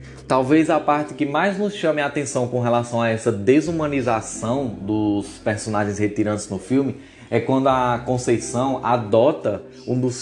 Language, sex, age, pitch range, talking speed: Portuguese, male, 20-39, 110-150 Hz, 155 wpm